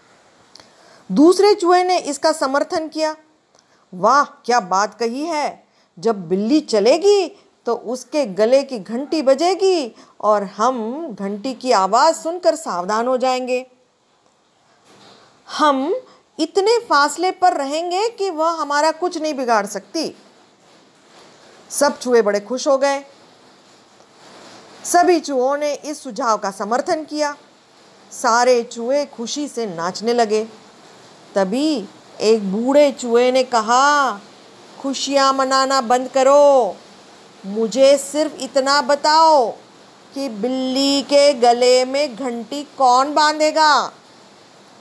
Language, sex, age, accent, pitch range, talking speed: Hindi, female, 40-59, native, 240-310 Hz, 110 wpm